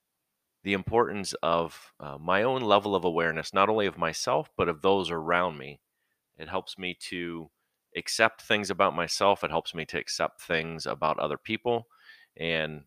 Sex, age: male, 30-49